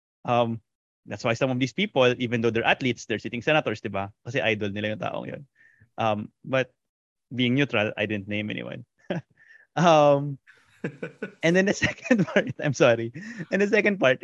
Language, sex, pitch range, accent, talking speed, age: Filipino, male, 120-160 Hz, native, 155 wpm, 20-39